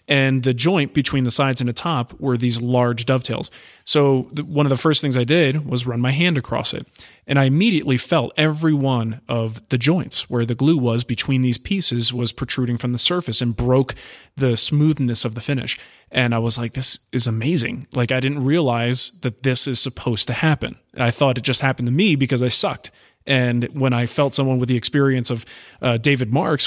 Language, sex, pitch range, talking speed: English, male, 120-145 Hz, 210 wpm